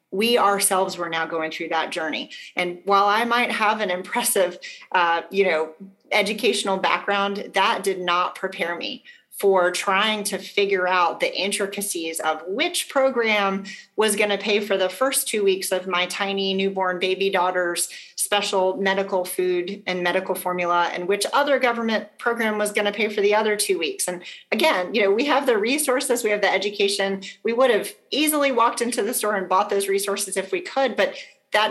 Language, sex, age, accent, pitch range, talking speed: English, female, 30-49, American, 175-210 Hz, 185 wpm